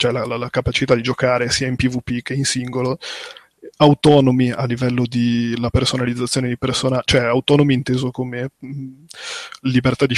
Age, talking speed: 20-39, 155 wpm